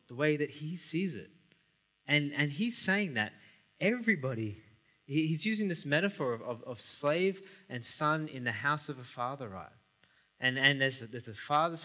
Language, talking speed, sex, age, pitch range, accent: English, 180 wpm, male, 20-39, 130-175 Hz, Australian